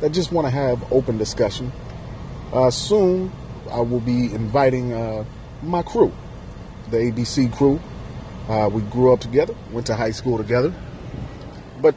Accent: American